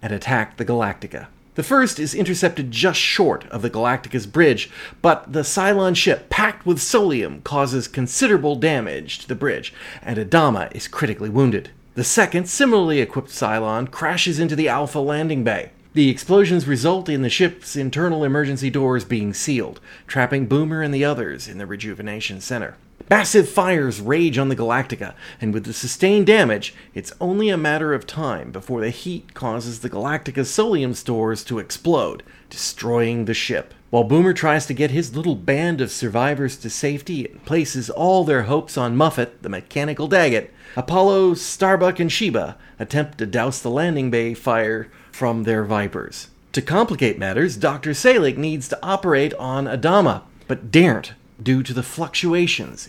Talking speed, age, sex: 165 wpm, 30-49, male